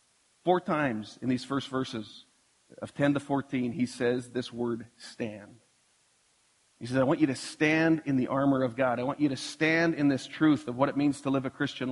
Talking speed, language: 215 wpm, English